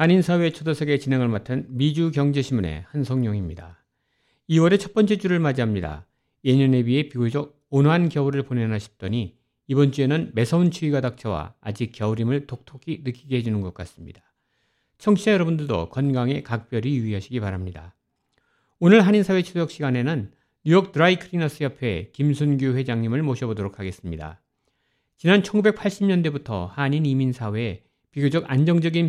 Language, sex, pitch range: Korean, male, 115-155 Hz